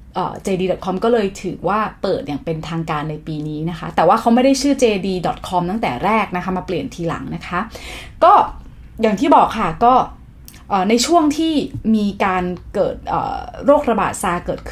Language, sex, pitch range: Thai, female, 180-245 Hz